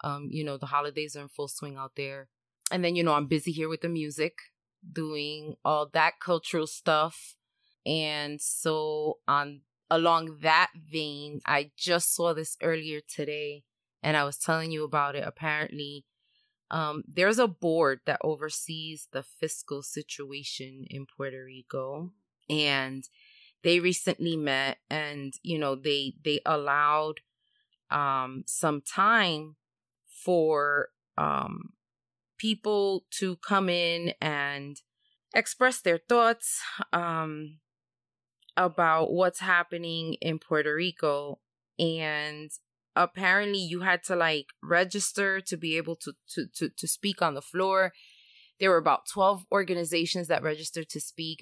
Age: 20-39